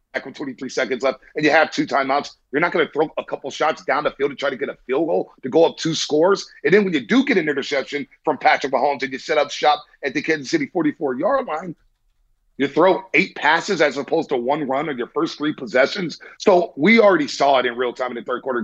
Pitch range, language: 130-210 Hz, English